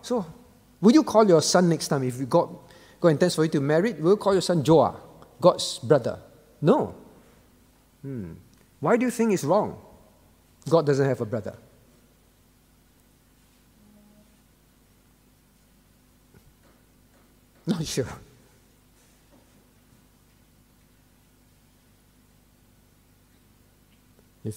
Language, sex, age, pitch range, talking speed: English, male, 50-69, 125-180 Hz, 105 wpm